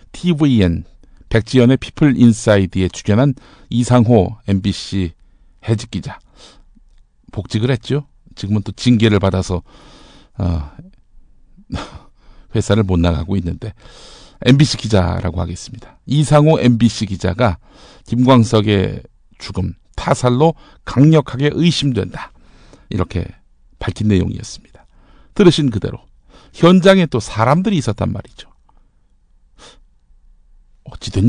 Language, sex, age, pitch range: Korean, male, 50-69, 100-145 Hz